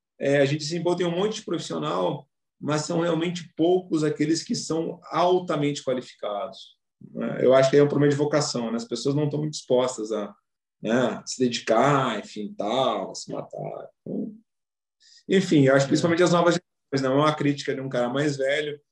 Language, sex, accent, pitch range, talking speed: Portuguese, male, Brazilian, 140-175 Hz, 185 wpm